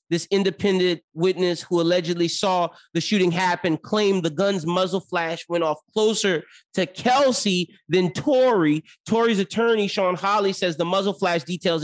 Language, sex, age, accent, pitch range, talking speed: English, male, 30-49, American, 155-185 Hz, 150 wpm